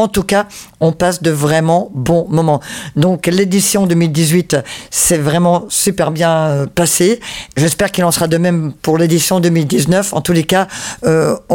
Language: French